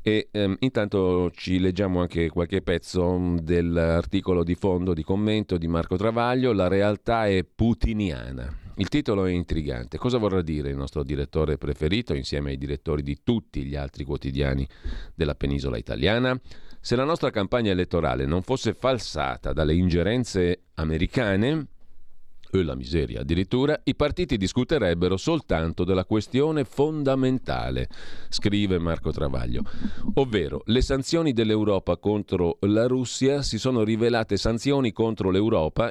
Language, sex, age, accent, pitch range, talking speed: Italian, male, 40-59, native, 85-115 Hz, 135 wpm